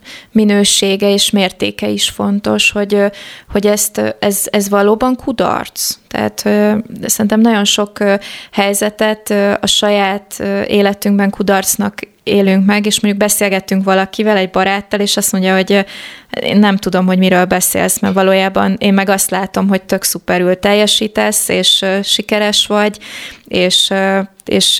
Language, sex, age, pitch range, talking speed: Hungarian, female, 20-39, 190-215 Hz, 130 wpm